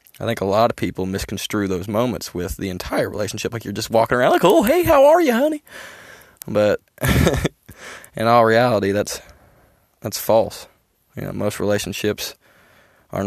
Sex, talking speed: male, 165 wpm